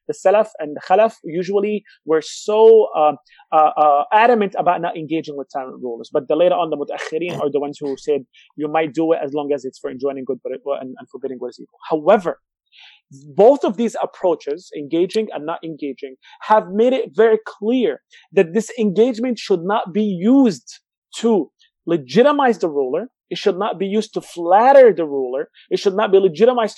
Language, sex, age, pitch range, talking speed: English, male, 30-49, 160-215 Hz, 190 wpm